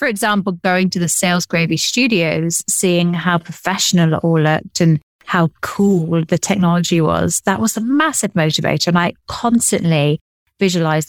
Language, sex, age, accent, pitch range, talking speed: English, female, 30-49, British, 170-205 Hz, 155 wpm